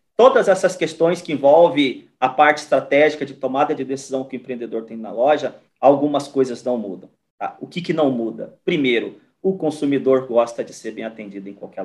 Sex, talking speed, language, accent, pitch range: male, 190 wpm, Portuguese, Brazilian, 130-150 Hz